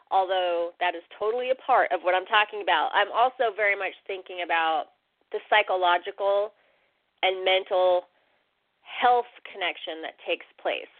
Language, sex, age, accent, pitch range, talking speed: English, female, 30-49, American, 175-240 Hz, 140 wpm